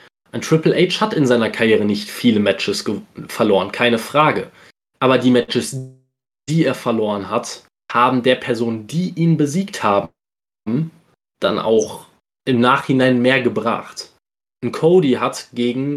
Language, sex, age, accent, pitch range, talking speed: German, male, 20-39, German, 120-145 Hz, 135 wpm